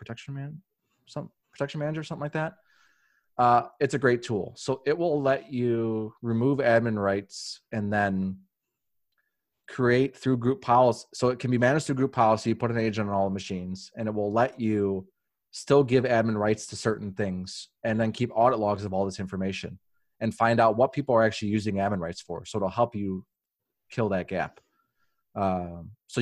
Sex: male